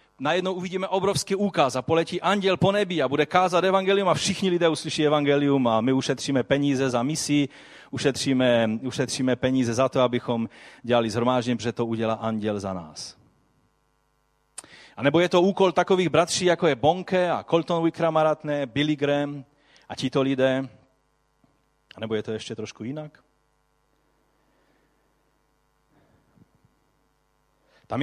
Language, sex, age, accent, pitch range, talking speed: Czech, male, 30-49, native, 130-165 Hz, 135 wpm